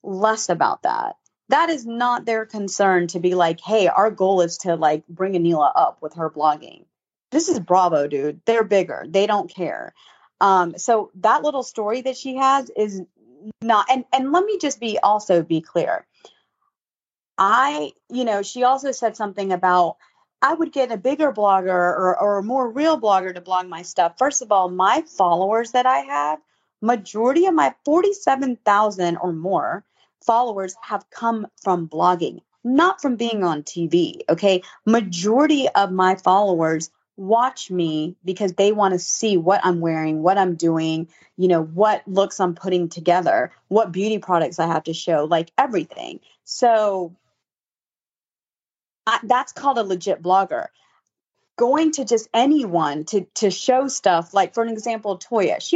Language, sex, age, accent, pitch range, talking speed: English, female, 30-49, American, 180-240 Hz, 165 wpm